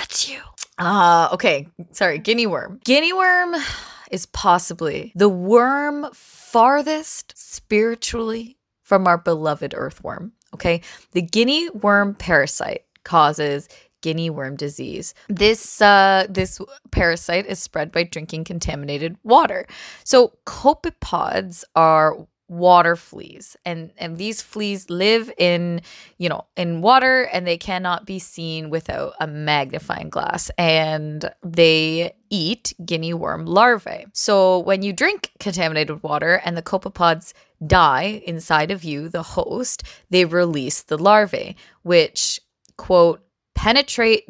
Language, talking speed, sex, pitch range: English, 120 wpm, female, 165-220 Hz